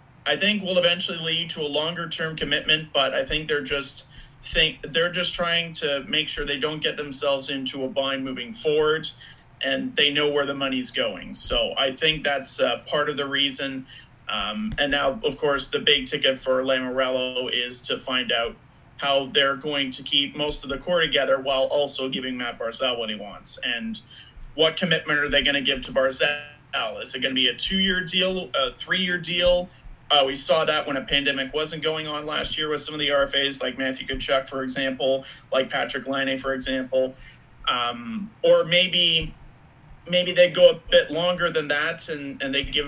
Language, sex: English, male